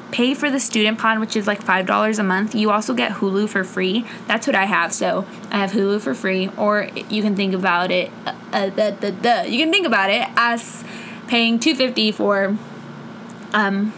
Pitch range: 200-235 Hz